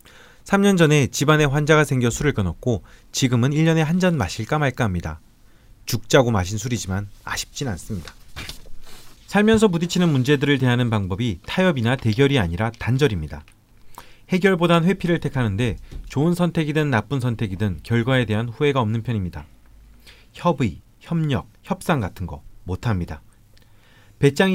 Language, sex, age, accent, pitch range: Korean, male, 40-59, native, 105-140 Hz